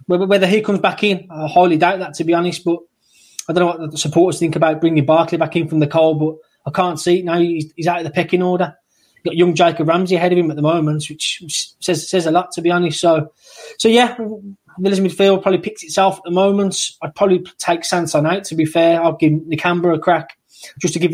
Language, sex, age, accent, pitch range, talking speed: English, male, 20-39, British, 165-190 Hz, 245 wpm